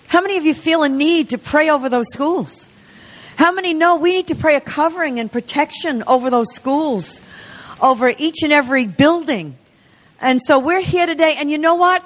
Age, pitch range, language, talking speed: 50-69, 255-315 Hz, English, 200 wpm